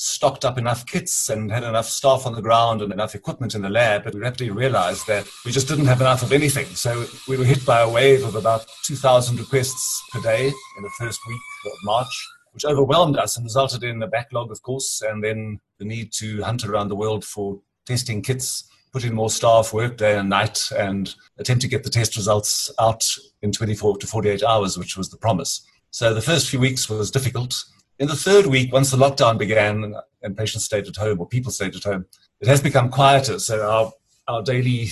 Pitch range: 105-130 Hz